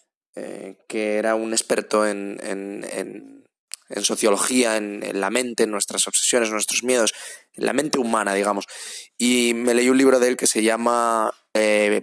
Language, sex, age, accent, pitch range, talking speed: Spanish, male, 20-39, Spanish, 105-120 Hz, 175 wpm